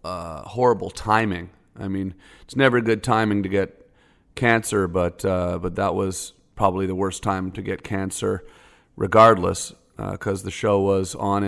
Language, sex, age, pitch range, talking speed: English, male, 40-59, 90-105 Hz, 160 wpm